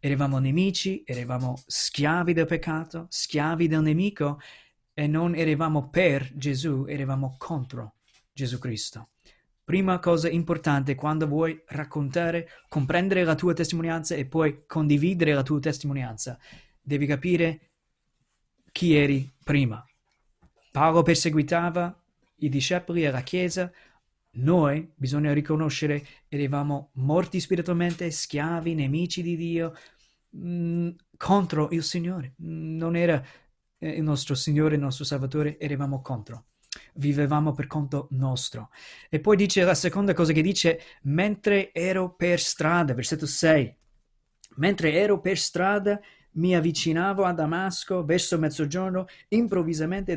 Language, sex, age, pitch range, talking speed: Italian, male, 20-39, 145-175 Hz, 115 wpm